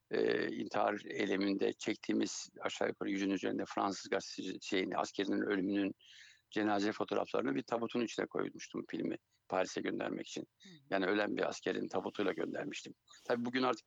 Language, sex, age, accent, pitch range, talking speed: German, male, 60-79, Turkish, 110-135 Hz, 140 wpm